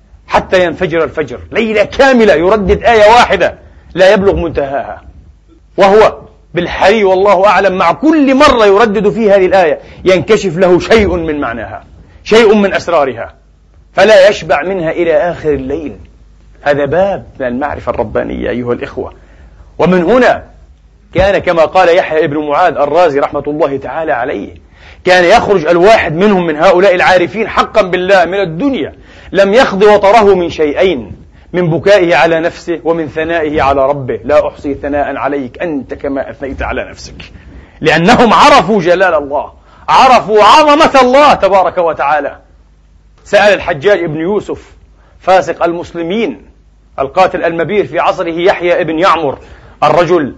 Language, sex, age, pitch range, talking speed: Arabic, male, 40-59, 145-200 Hz, 130 wpm